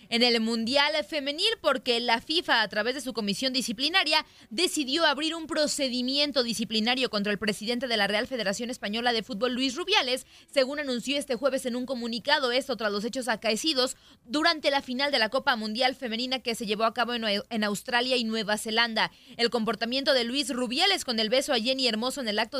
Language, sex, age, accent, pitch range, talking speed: Spanish, female, 20-39, Mexican, 230-285 Hz, 195 wpm